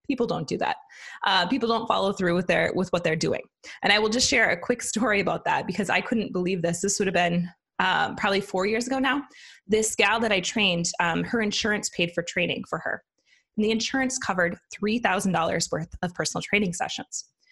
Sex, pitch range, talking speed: female, 180-230 Hz, 215 wpm